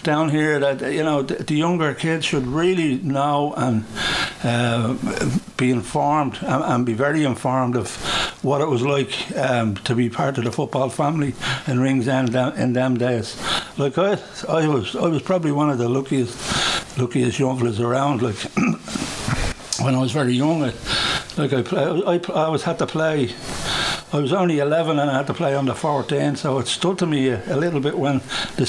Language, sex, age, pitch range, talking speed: English, male, 60-79, 130-160 Hz, 195 wpm